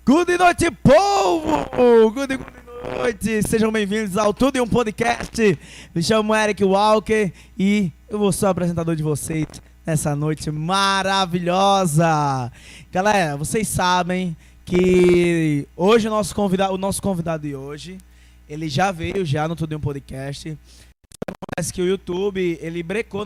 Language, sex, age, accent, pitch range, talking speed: Portuguese, male, 20-39, Brazilian, 150-205 Hz, 140 wpm